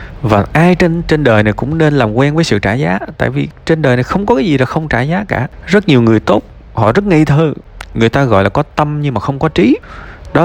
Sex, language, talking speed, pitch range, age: male, Vietnamese, 275 wpm, 100-135 Hz, 20-39